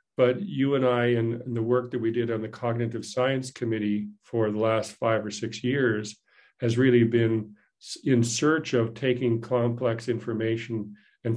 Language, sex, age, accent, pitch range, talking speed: English, male, 50-69, American, 115-125 Hz, 170 wpm